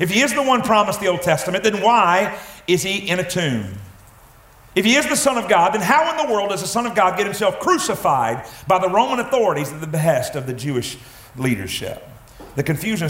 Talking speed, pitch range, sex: 225 wpm, 135-180 Hz, male